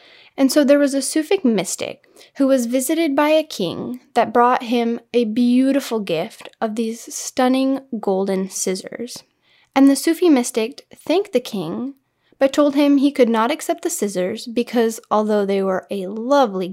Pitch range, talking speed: 210-280 Hz, 165 wpm